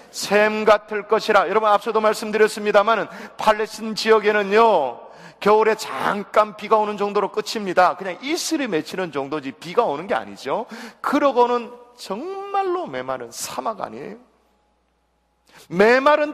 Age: 40-59